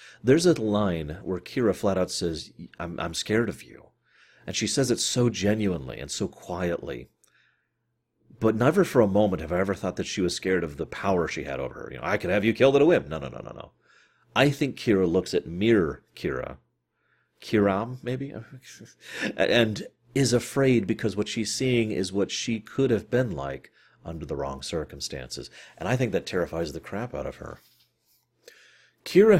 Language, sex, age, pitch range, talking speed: English, male, 40-59, 90-120 Hz, 195 wpm